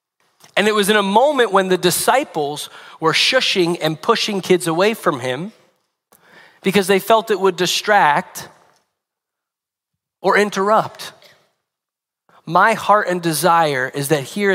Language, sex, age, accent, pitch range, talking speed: English, male, 30-49, American, 140-200 Hz, 130 wpm